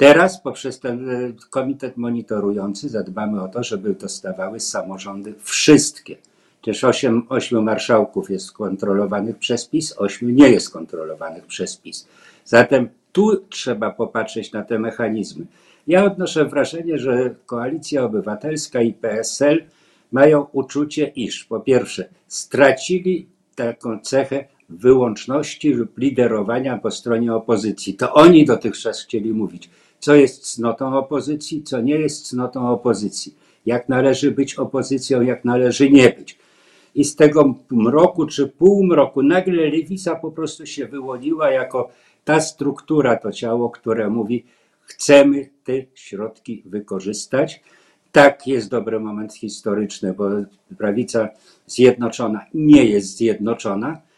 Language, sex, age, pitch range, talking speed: Polish, male, 50-69, 110-145 Hz, 120 wpm